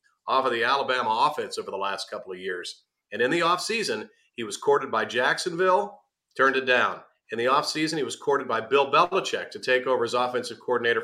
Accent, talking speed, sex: American, 205 wpm, male